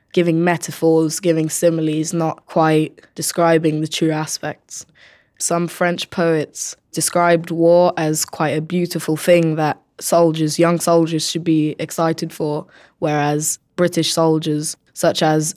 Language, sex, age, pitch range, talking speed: English, female, 20-39, 155-170 Hz, 125 wpm